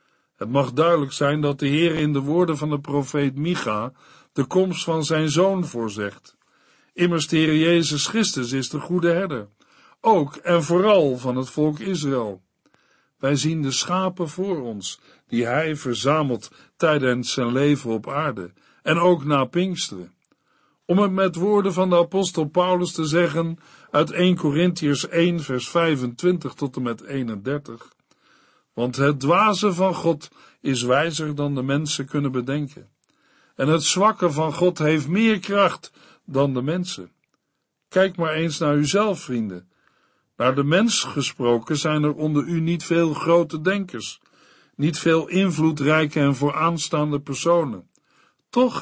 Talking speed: 150 wpm